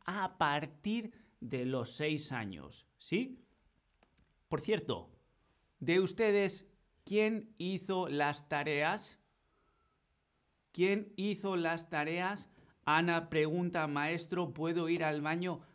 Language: Spanish